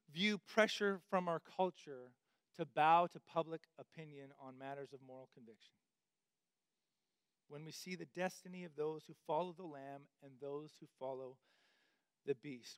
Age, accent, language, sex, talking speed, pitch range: 40-59, American, English, male, 150 wpm, 145-185 Hz